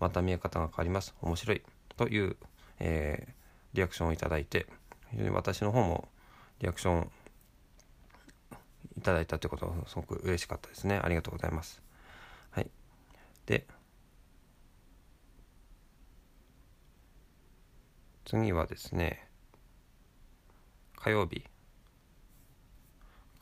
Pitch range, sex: 85-110 Hz, male